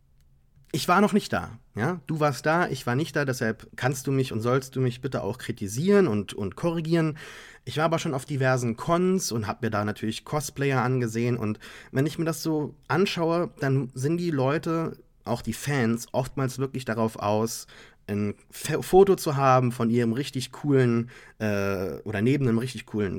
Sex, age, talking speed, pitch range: male, 30-49, 185 wpm, 115-150 Hz